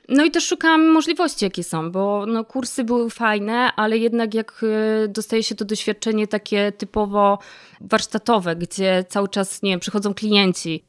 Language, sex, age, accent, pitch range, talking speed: Polish, female, 20-39, native, 200-230 Hz, 160 wpm